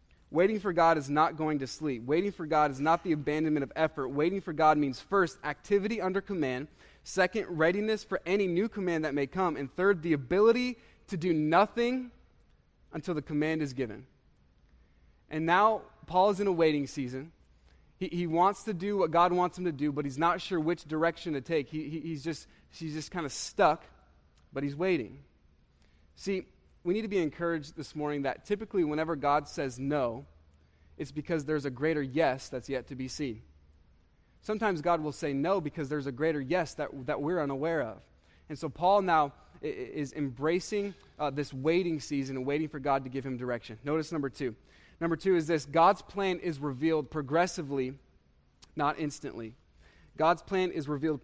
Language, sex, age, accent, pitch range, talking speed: English, male, 20-39, American, 135-175 Hz, 190 wpm